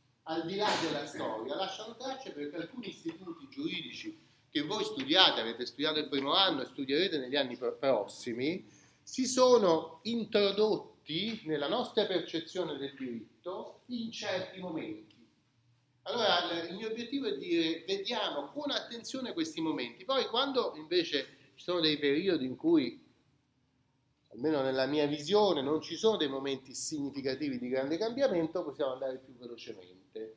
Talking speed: 140 wpm